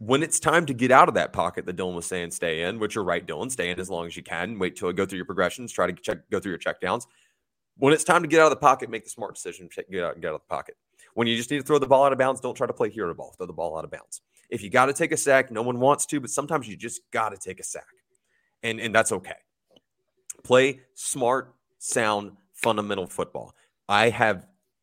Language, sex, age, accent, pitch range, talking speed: English, male, 30-49, American, 95-135 Hz, 280 wpm